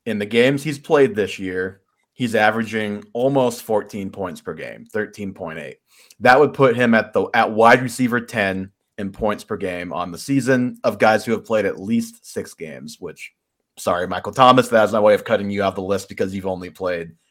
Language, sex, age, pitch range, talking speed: English, male, 30-49, 95-125 Hz, 205 wpm